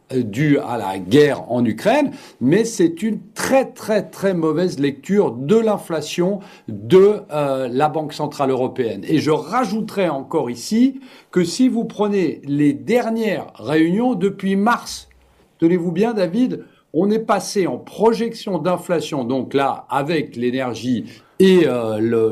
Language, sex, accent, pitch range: French, male, French, 155-225 Hz